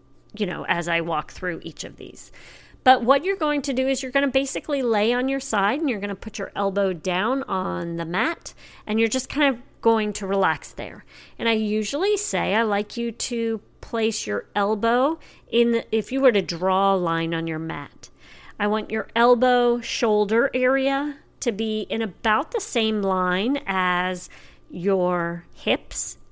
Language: English